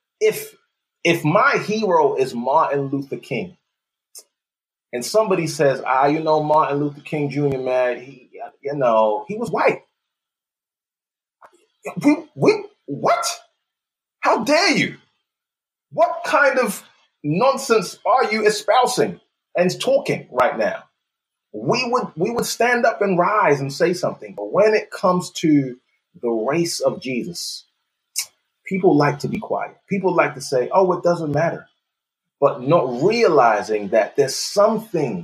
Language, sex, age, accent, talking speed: English, male, 30-49, American, 140 wpm